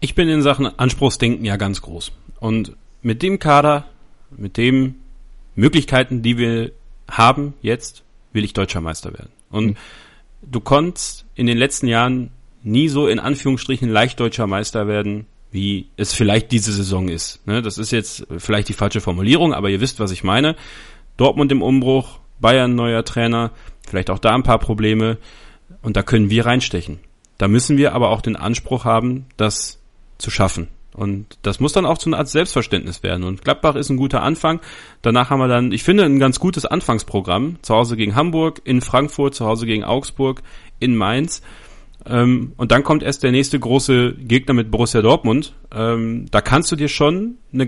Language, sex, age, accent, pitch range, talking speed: German, male, 40-59, German, 110-140 Hz, 175 wpm